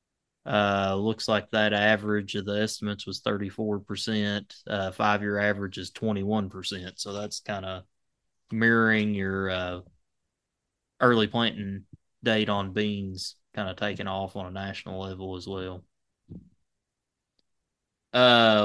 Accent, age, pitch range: American, 20-39, 95-115 Hz